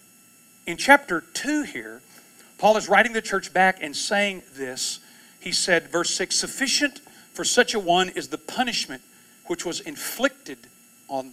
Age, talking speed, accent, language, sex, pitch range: 40-59, 155 wpm, American, English, male, 175-235 Hz